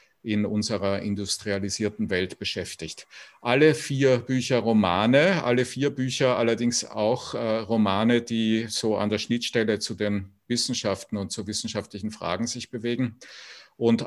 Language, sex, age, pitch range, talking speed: English, male, 50-69, 105-120 Hz, 130 wpm